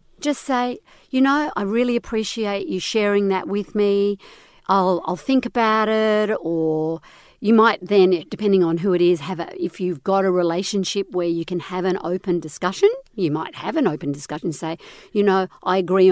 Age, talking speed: 50-69, 195 wpm